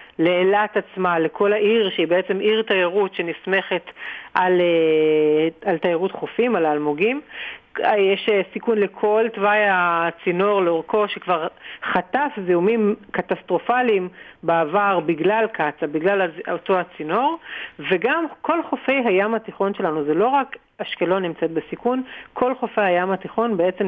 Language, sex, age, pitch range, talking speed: Hebrew, female, 50-69, 175-215 Hz, 120 wpm